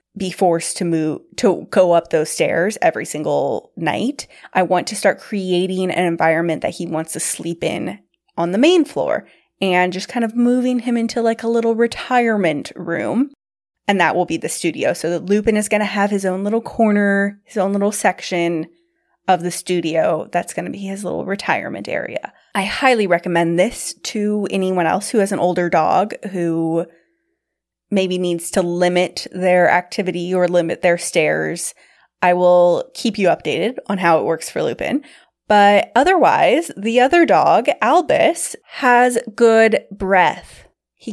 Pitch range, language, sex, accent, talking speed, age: 170-225 Hz, English, female, American, 170 wpm, 20-39